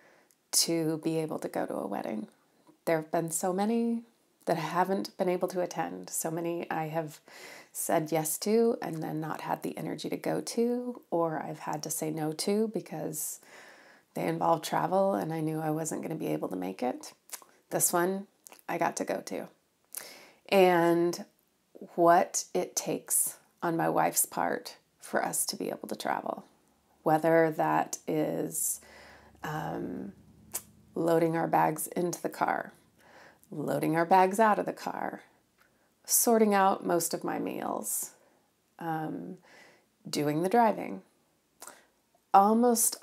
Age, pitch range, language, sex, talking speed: 30-49, 160-190 Hz, English, female, 150 wpm